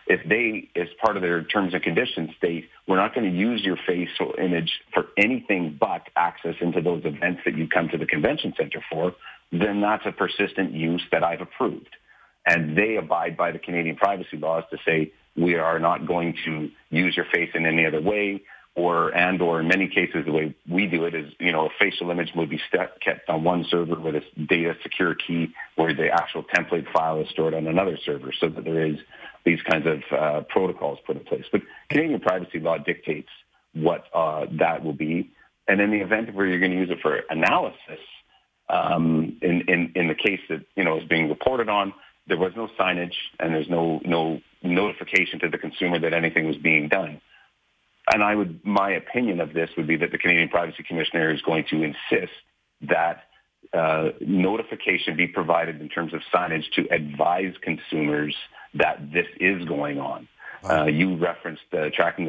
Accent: American